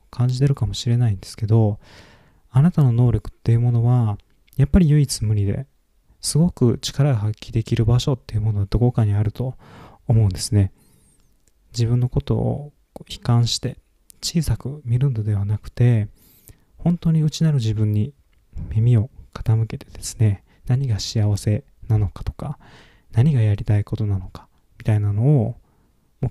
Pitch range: 100-125 Hz